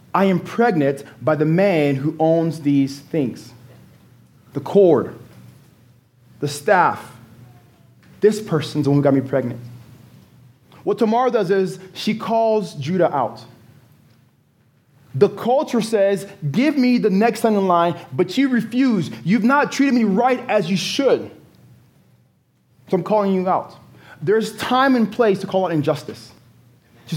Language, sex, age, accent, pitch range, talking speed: English, male, 20-39, American, 145-235 Hz, 145 wpm